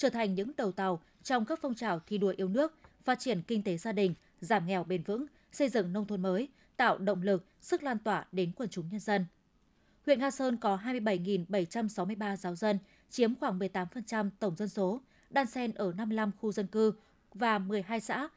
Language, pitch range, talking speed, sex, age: Vietnamese, 195-245 Hz, 205 wpm, female, 20-39